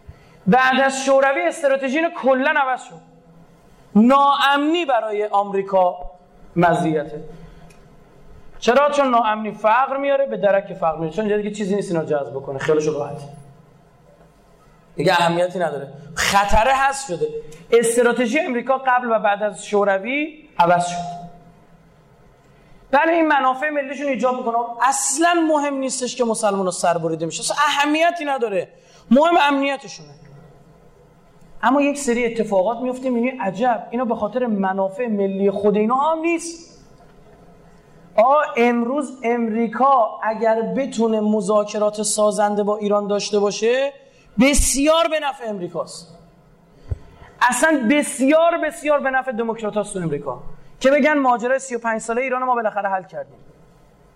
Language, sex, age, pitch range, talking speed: Persian, male, 30-49, 175-270 Hz, 125 wpm